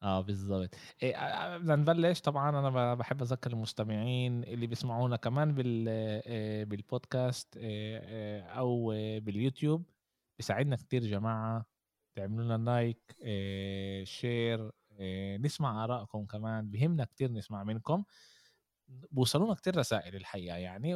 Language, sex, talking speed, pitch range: Arabic, male, 105 wpm, 105-140 Hz